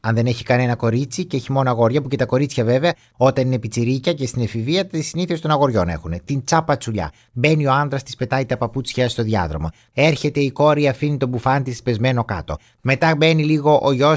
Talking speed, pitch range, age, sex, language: 215 wpm, 125-160 Hz, 30-49, male, Greek